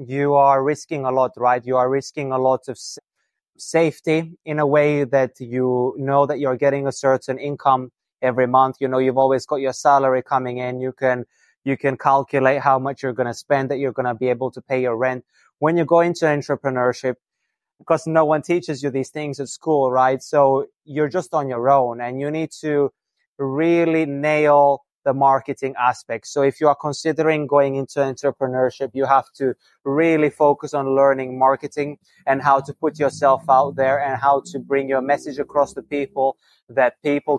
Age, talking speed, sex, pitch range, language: 20-39, 195 wpm, male, 130-145 Hz, English